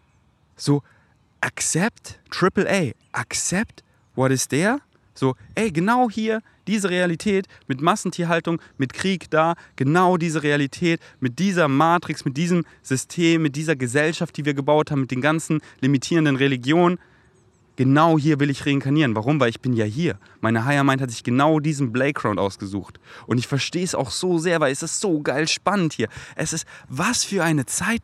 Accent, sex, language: German, male, German